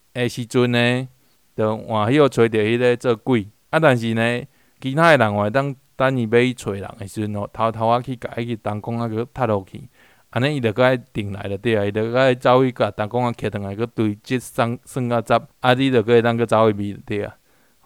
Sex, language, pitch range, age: male, Chinese, 105-125 Hz, 20-39